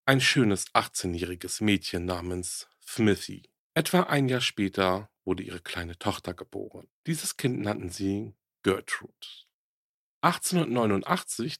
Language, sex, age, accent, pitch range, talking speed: German, male, 40-59, German, 95-125 Hz, 110 wpm